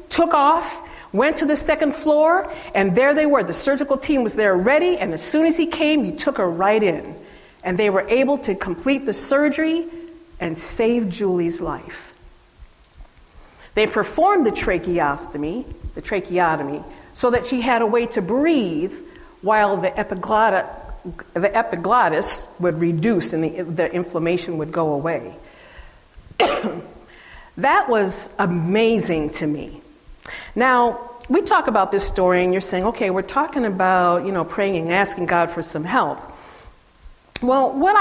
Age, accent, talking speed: 50-69, American, 150 wpm